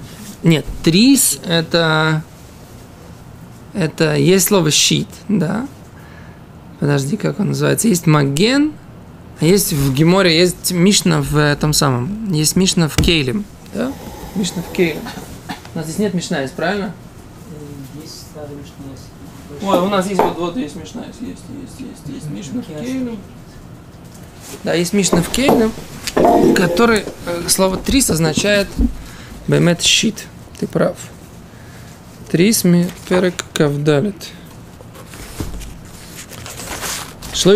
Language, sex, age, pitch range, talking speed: Russian, male, 20-39, 155-205 Hz, 115 wpm